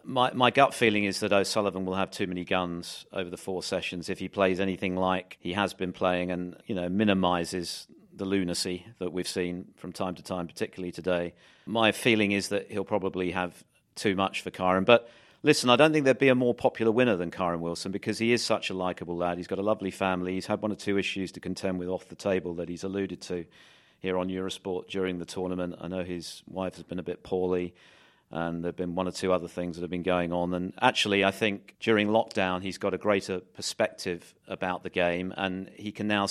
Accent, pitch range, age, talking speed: British, 90-105 Hz, 40-59, 230 wpm